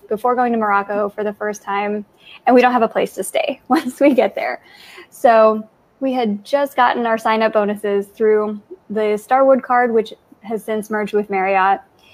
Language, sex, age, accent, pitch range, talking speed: English, female, 10-29, American, 210-245 Hz, 190 wpm